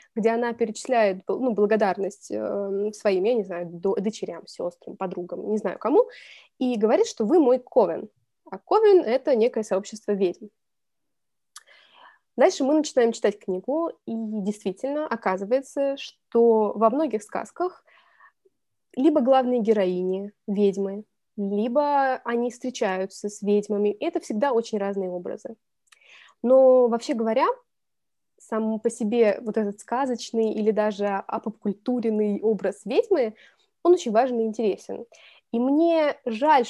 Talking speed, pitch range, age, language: 125 wpm, 205-260 Hz, 20-39, Russian